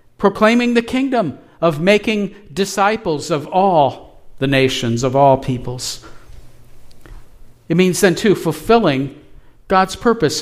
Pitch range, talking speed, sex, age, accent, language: 135-195 Hz, 115 wpm, male, 50-69, American, English